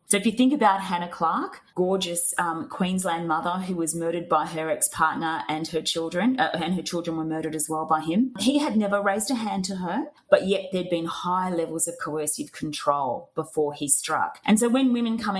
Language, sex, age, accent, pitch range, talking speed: English, female, 30-49, Australian, 160-210 Hz, 215 wpm